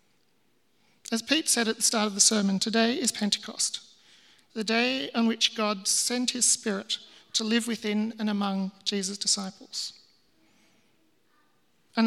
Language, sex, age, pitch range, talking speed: English, male, 40-59, 210-240 Hz, 140 wpm